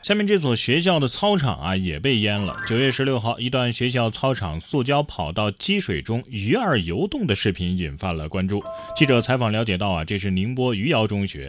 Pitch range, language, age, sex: 95-140 Hz, Chinese, 20-39, male